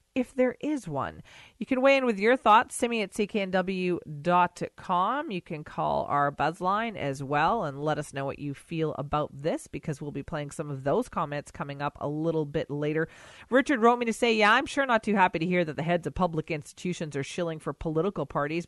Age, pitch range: 40-59, 155-210 Hz